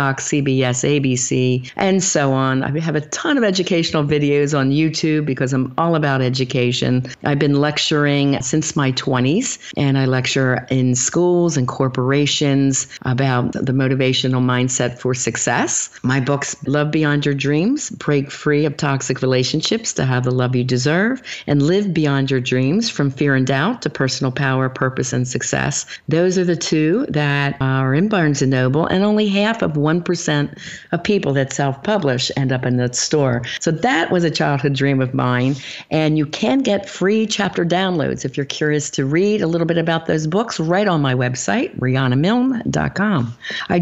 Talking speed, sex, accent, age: 175 wpm, female, American, 50-69